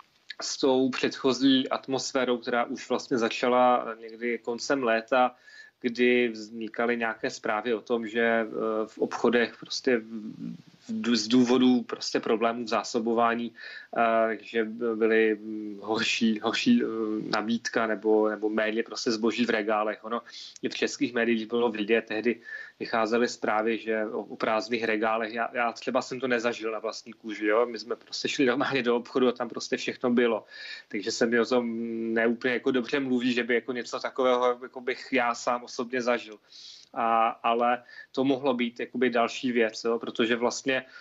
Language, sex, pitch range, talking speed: Czech, male, 115-125 Hz, 150 wpm